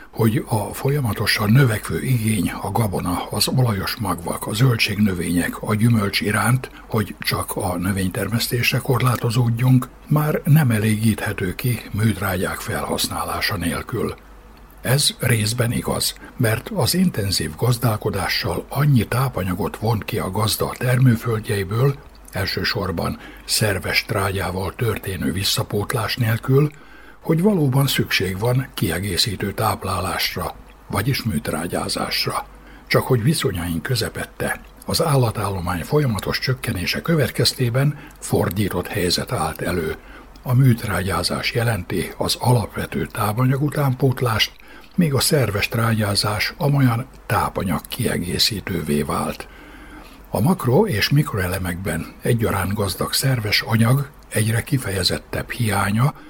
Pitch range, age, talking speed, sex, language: 100-130 Hz, 60-79, 100 wpm, male, Hungarian